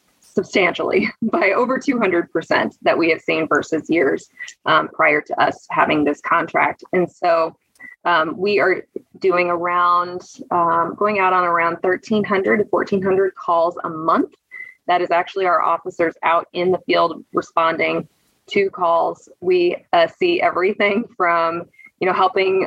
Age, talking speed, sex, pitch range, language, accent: 20-39, 145 wpm, female, 170-215 Hz, English, American